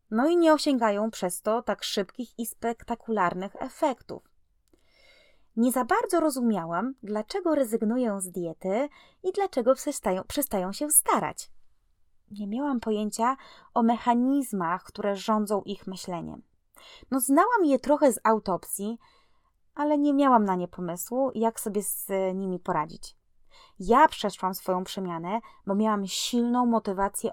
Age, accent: 20-39, native